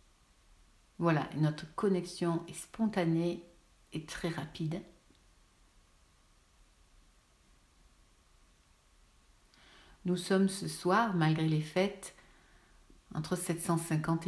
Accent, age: French, 60-79